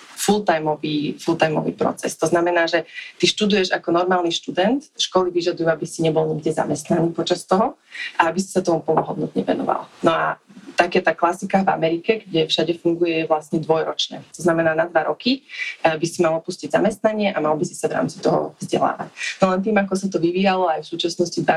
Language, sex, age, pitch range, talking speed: Slovak, female, 20-39, 160-190 Hz, 195 wpm